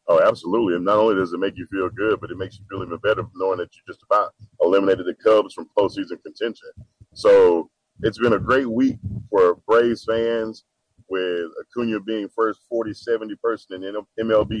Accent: American